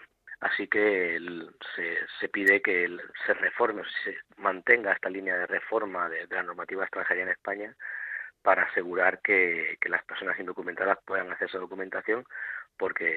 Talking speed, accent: 160 wpm, Spanish